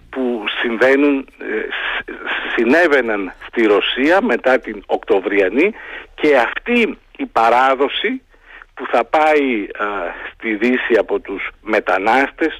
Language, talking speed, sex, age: Greek, 90 wpm, male, 50-69